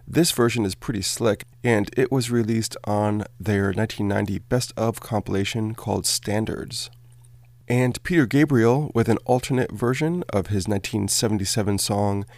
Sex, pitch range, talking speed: male, 105-125 Hz, 135 wpm